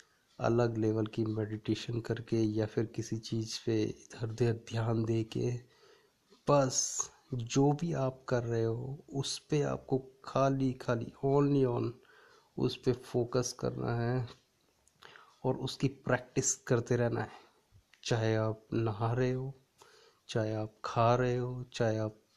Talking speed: 145 wpm